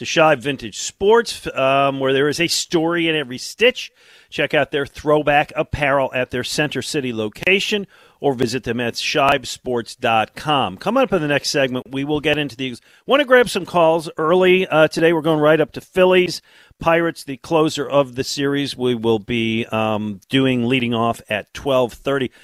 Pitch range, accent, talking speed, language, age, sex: 115-150 Hz, American, 180 wpm, English, 50-69, male